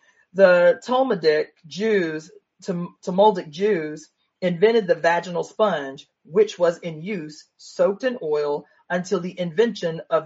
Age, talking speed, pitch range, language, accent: 30-49, 125 wpm, 160-210 Hz, English, American